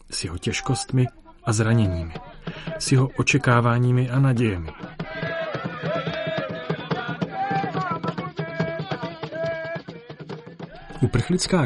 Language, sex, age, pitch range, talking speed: Czech, male, 30-49, 105-135 Hz, 55 wpm